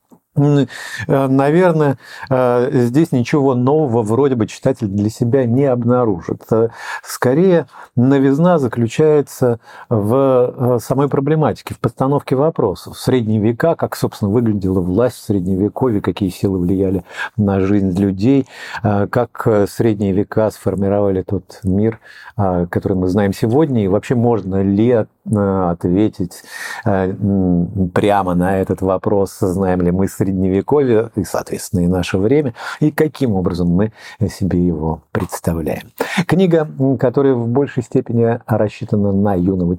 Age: 50-69